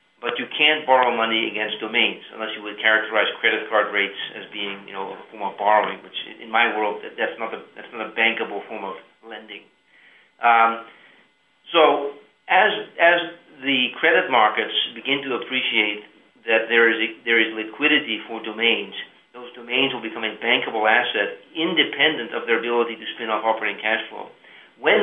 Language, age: English, 40-59